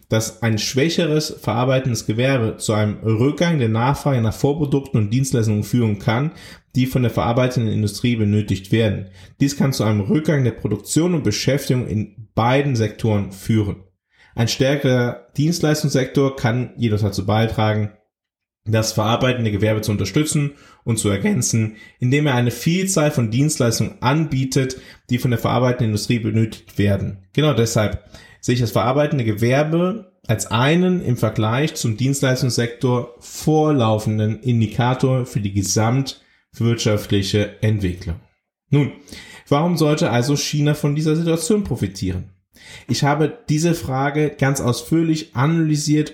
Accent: German